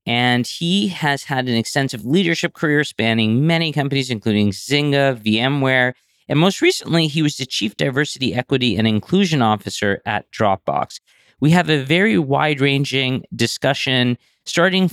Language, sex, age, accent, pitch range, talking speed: English, male, 40-59, American, 120-155 Hz, 140 wpm